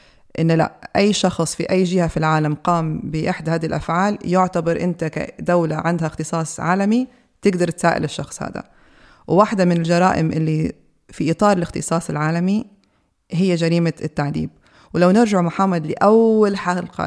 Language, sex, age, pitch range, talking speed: Arabic, female, 20-39, 165-190 Hz, 135 wpm